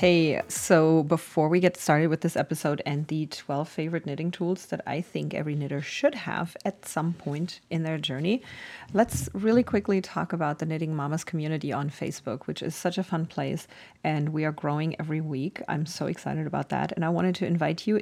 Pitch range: 155-185 Hz